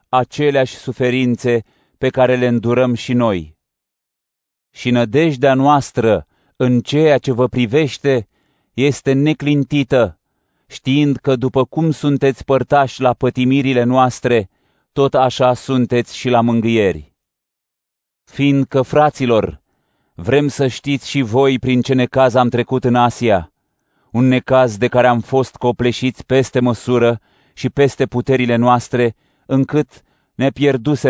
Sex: male